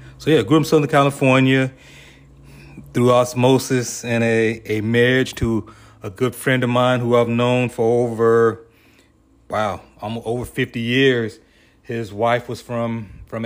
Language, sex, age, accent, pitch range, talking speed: English, male, 30-49, American, 105-120 Hz, 145 wpm